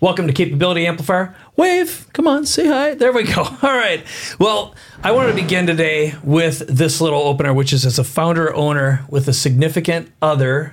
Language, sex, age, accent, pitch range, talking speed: English, male, 40-59, American, 130-165 Hz, 190 wpm